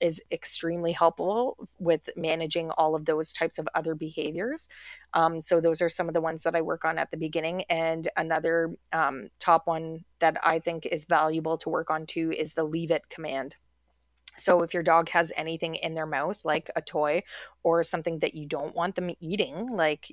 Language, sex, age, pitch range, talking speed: English, female, 30-49, 160-175 Hz, 200 wpm